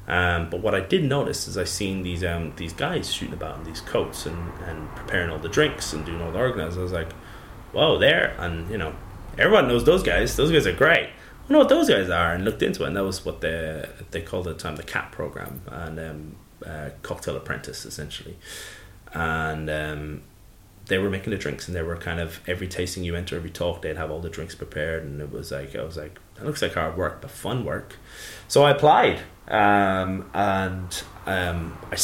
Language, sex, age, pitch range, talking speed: English, male, 30-49, 80-95 Hz, 225 wpm